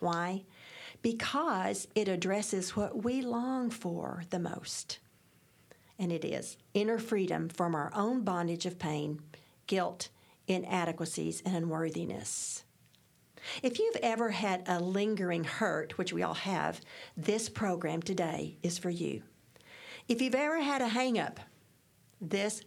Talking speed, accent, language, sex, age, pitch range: 130 wpm, American, English, female, 50-69, 180-235 Hz